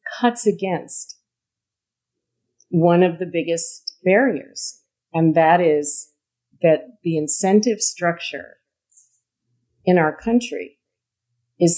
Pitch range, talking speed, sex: 150-175 Hz, 90 wpm, female